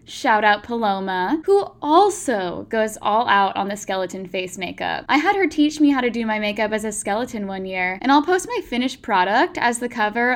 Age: 10-29